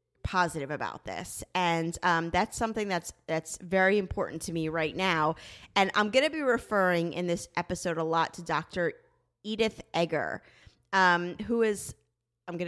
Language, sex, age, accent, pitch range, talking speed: English, female, 30-49, American, 165-220 Hz, 165 wpm